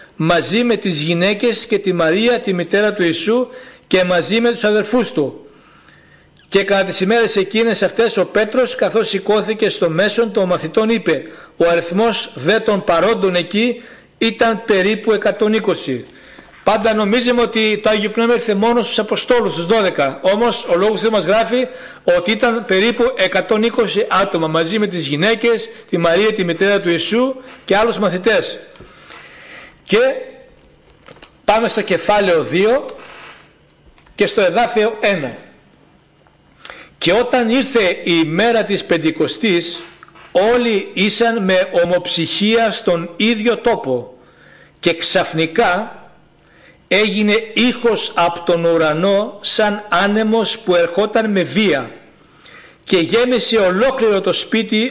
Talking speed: 130 wpm